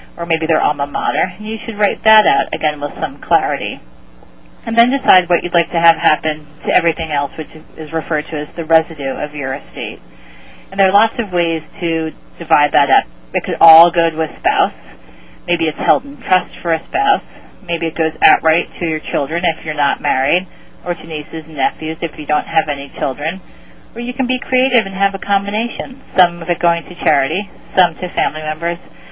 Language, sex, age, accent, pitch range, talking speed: English, female, 30-49, American, 150-175 Hz, 210 wpm